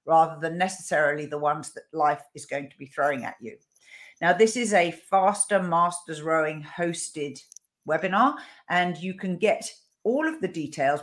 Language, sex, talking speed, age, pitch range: English, female, 170 wpm, 50-69, 150-185 Hz